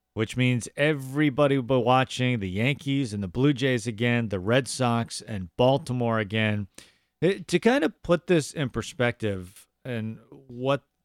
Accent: American